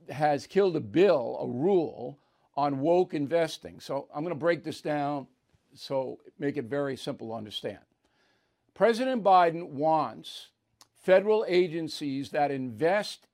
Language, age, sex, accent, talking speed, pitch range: English, 50-69, male, American, 135 wpm, 145-185 Hz